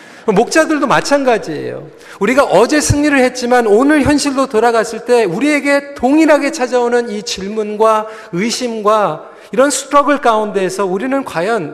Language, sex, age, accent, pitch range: Korean, male, 40-59, native, 215-275 Hz